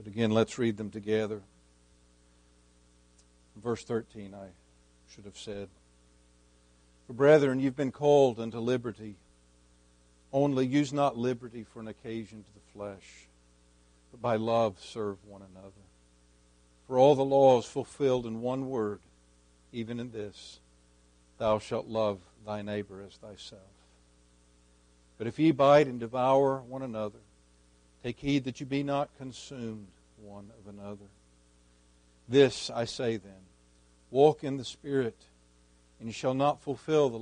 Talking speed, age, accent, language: 140 wpm, 60-79, American, English